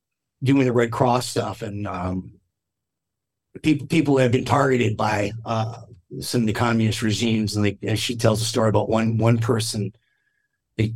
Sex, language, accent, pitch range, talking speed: male, English, American, 110-135 Hz, 165 wpm